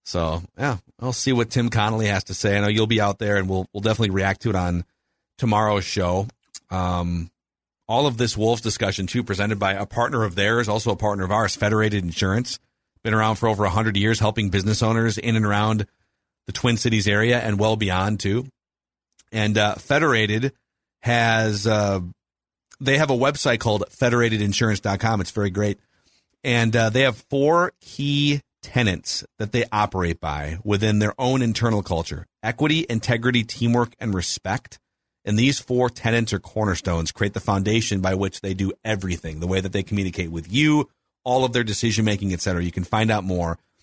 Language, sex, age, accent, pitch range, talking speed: English, male, 40-59, American, 95-120 Hz, 180 wpm